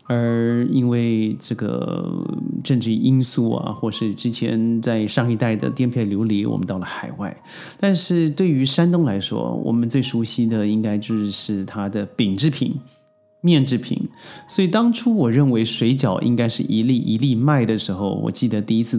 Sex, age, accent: male, 30-49, native